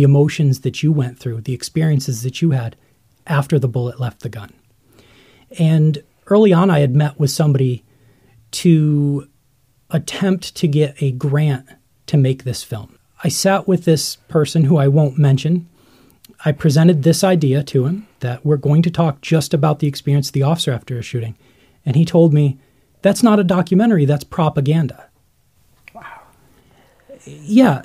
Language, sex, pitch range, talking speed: English, male, 135-175 Hz, 160 wpm